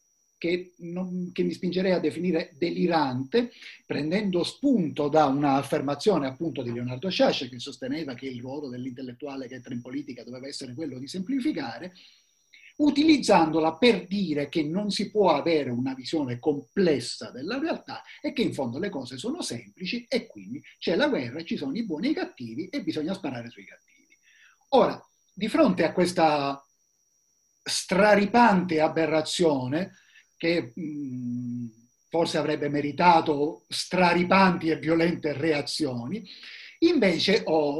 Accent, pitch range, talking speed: native, 145-205 Hz, 135 wpm